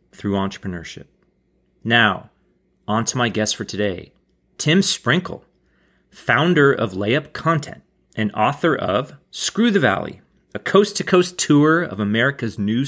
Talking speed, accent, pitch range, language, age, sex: 135 wpm, American, 115-180 Hz, English, 30-49, male